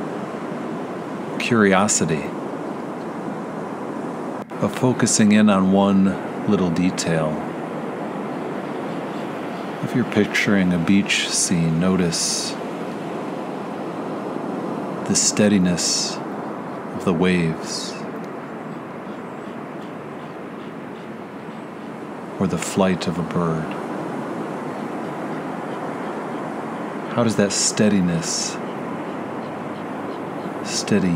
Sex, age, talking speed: male, 40-59, 60 wpm